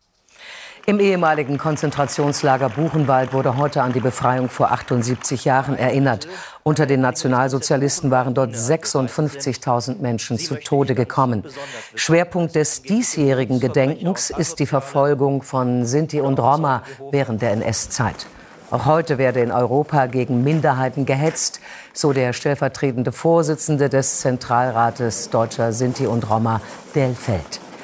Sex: female